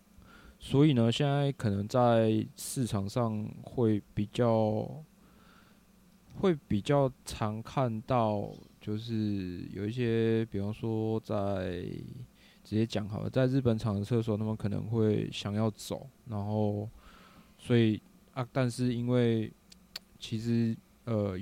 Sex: male